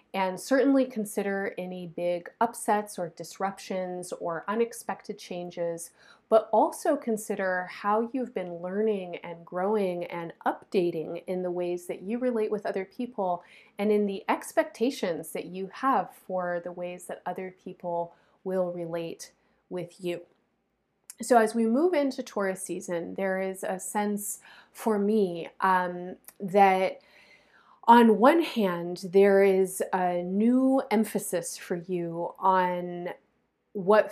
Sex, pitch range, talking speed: female, 180-225 Hz, 130 wpm